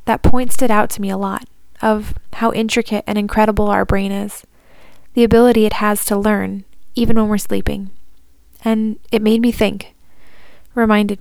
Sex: female